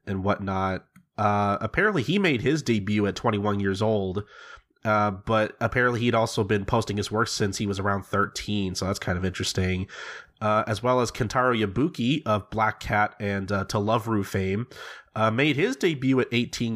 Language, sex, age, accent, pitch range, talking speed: English, male, 30-49, American, 100-125 Hz, 185 wpm